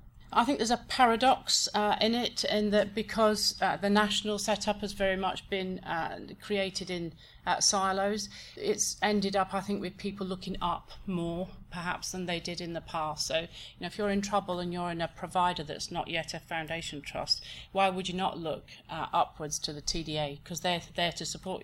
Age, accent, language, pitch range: 40-59, British, English, 150-190 Hz